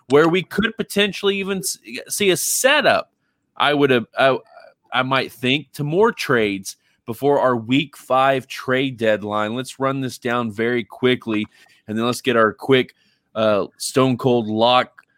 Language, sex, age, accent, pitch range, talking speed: English, male, 20-39, American, 115-145 Hz, 160 wpm